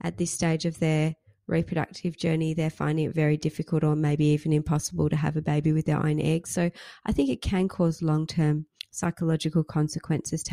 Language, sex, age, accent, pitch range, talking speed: English, female, 30-49, Australian, 155-180 Hz, 195 wpm